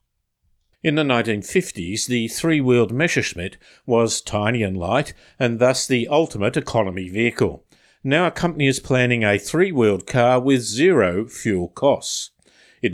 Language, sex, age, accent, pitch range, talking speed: English, male, 50-69, Australian, 105-140 Hz, 135 wpm